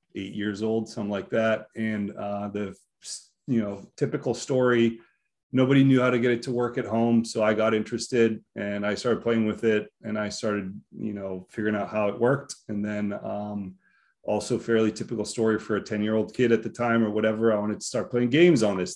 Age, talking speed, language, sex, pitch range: 30-49, 220 wpm, English, male, 105-120 Hz